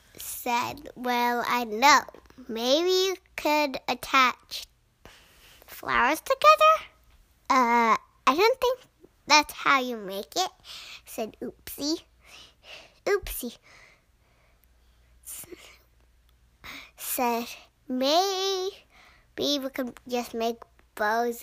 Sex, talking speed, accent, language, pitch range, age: male, 80 wpm, American, English, 235-320 Hz, 10-29